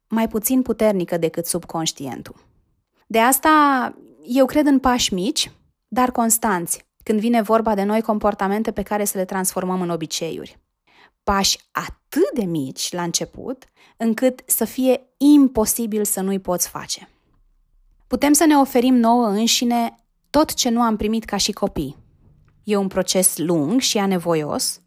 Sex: female